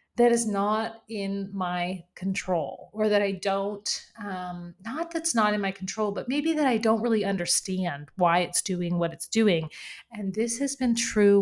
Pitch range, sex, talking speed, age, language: 190-235 Hz, female, 185 wpm, 30-49, English